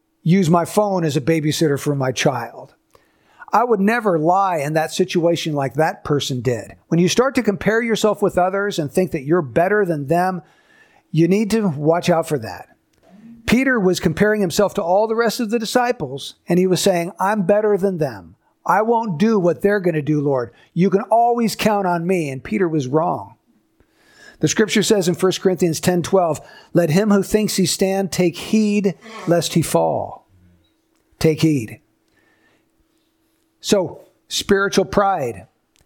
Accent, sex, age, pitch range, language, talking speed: American, male, 50-69, 160-205 Hz, English, 170 wpm